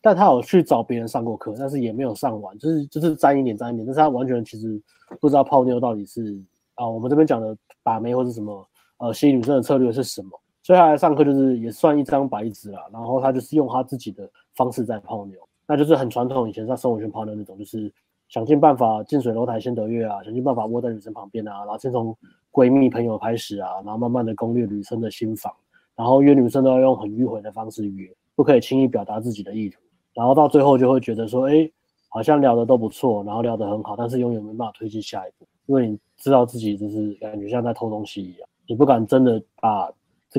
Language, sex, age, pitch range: Chinese, male, 20-39, 110-135 Hz